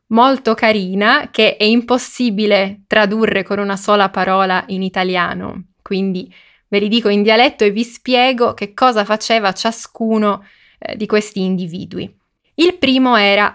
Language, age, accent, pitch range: Italian, 20-39, native, 200-255 Hz